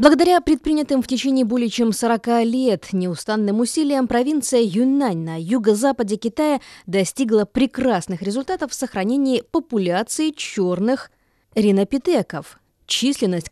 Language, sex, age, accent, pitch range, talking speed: Russian, female, 20-39, native, 195-270 Hz, 105 wpm